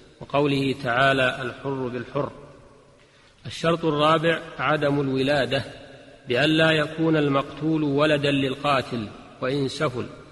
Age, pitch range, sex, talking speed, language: 40-59, 130-145 Hz, male, 95 wpm, Arabic